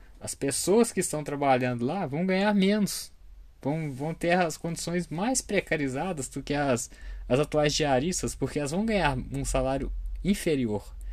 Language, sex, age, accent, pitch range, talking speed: Portuguese, male, 20-39, Brazilian, 110-160 Hz, 155 wpm